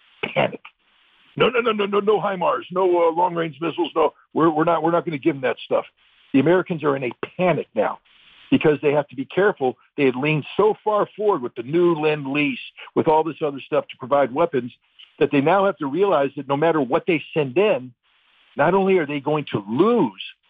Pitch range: 135-180 Hz